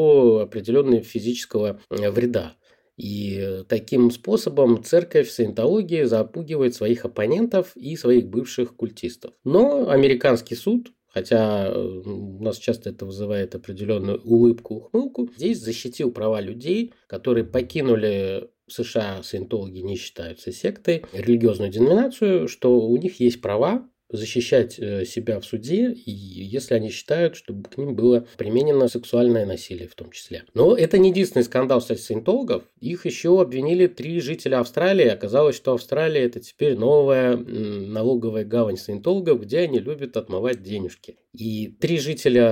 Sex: male